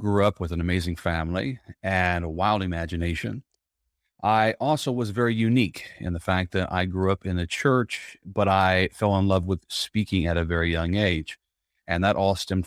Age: 40-59